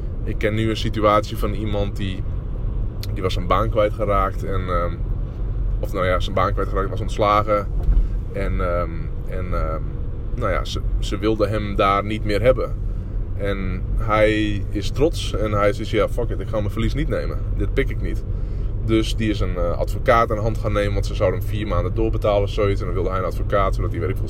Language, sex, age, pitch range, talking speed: Dutch, male, 20-39, 100-110 Hz, 205 wpm